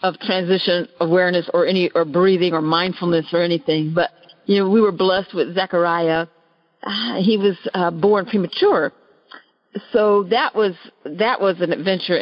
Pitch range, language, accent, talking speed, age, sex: 175-230 Hz, English, American, 150 wpm, 50-69, female